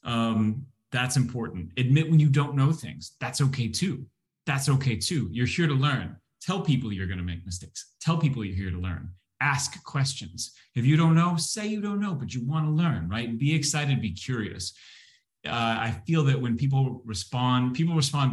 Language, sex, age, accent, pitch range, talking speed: English, male, 30-49, American, 100-135 Hz, 200 wpm